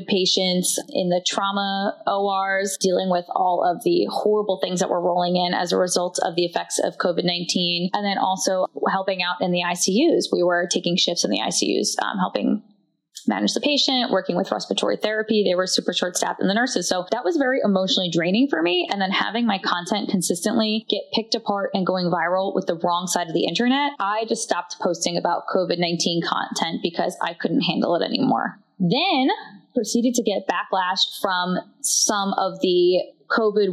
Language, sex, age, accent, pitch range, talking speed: English, female, 20-39, American, 180-240 Hz, 190 wpm